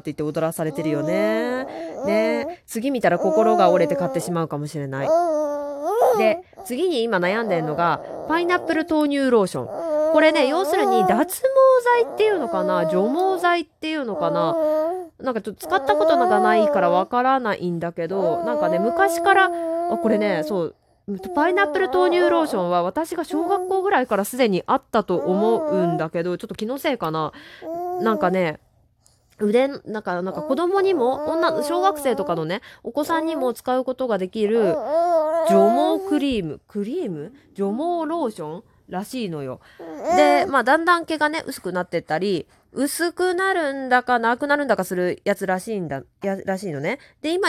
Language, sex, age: Japanese, female, 20-39